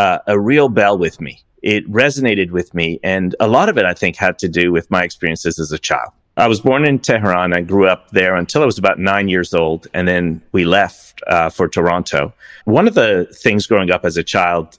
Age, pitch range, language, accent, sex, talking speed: 30-49, 85-110 Hz, English, American, male, 235 wpm